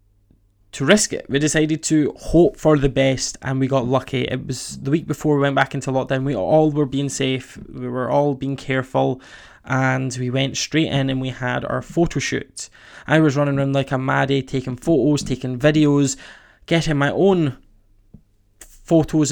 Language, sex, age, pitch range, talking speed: English, male, 20-39, 130-150 Hz, 185 wpm